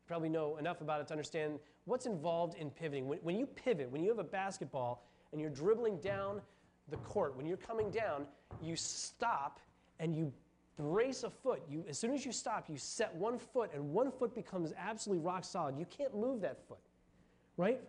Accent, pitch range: American, 155-210 Hz